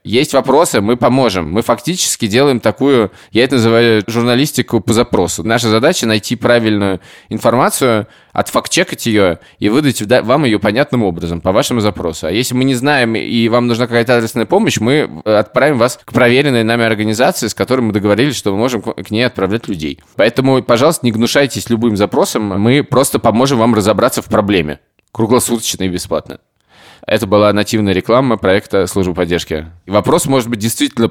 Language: Russian